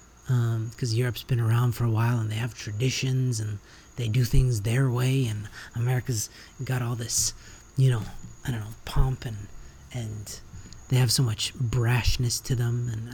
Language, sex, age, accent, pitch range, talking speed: English, male, 30-49, American, 110-140 Hz, 180 wpm